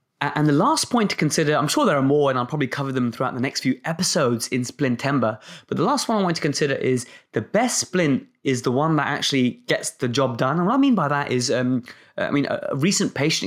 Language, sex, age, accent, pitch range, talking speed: English, male, 20-39, British, 130-155 Hz, 255 wpm